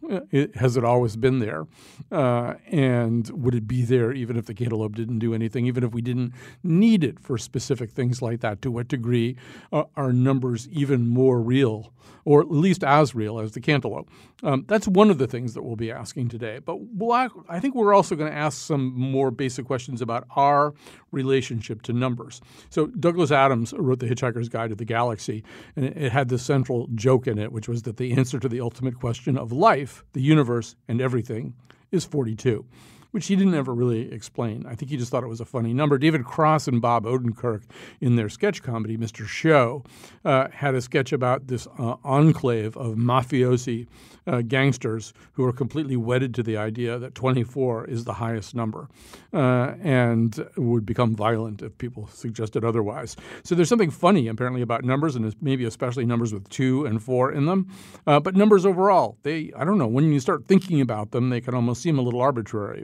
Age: 50-69